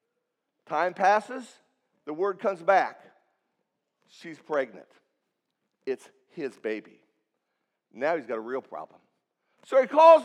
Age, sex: 50-69, male